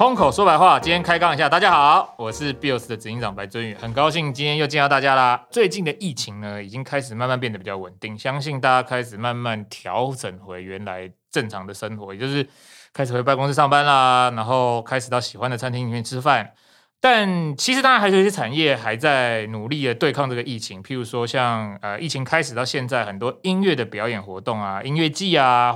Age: 20-39